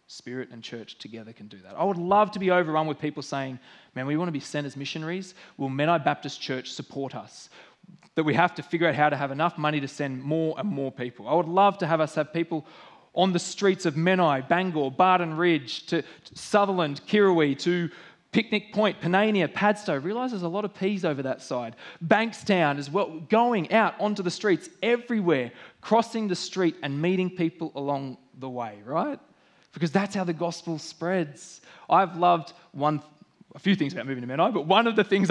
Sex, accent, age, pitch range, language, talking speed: male, Australian, 20-39, 135-185 Hz, English, 205 wpm